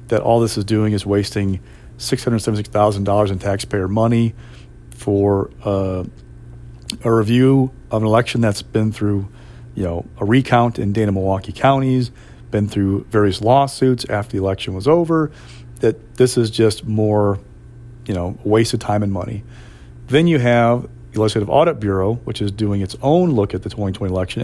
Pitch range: 100-120 Hz